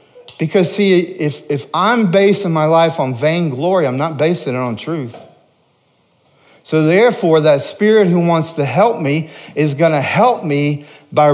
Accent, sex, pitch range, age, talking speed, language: American, male, 120-165 Hz, 40-59, 170 wpm, English